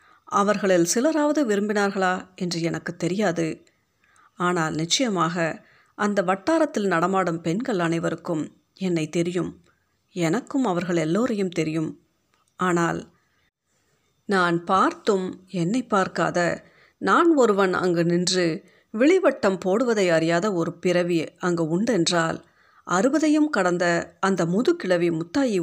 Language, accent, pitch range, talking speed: Tamil, native, 170-205 Hz, 95 wpm